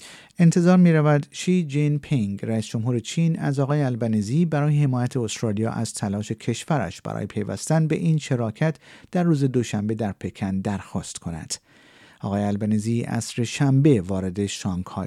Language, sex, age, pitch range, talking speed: Persian, male, 50-69, 110-150 Hz, 140 wpm